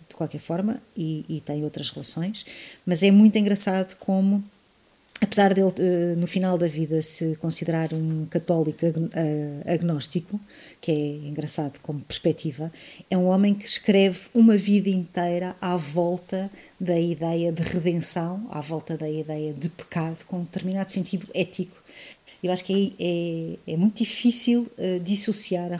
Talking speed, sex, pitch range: 150 wpm, female, 165-195 Hz